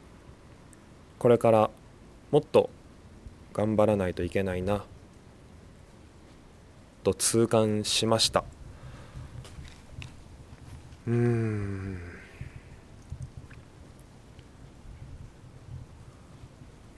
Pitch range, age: 95-120 Hz, 20-39